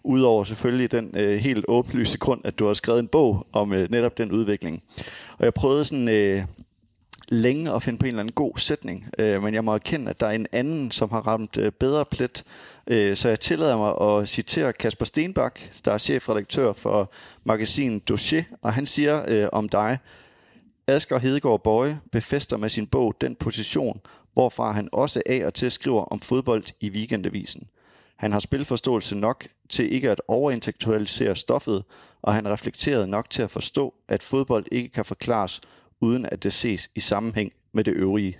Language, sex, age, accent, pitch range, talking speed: English, male, 30-49, Danish, 100-125 Hz, 185 wpm